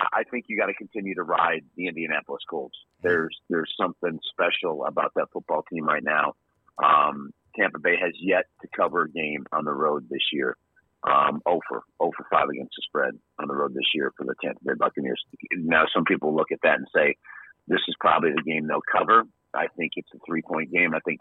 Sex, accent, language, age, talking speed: male, American, English, 40-59, 220 wpm